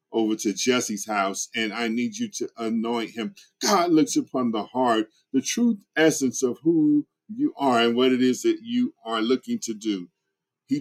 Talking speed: 190 wpm